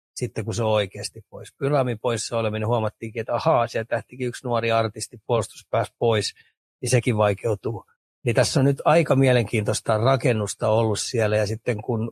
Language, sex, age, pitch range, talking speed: Finnish, male, 30-49, 110-130 Hz, 170 wpm